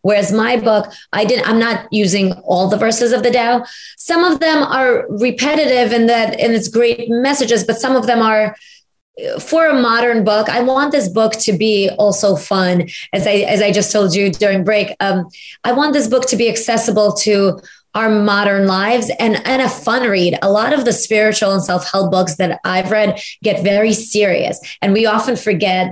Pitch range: 200-240 Hz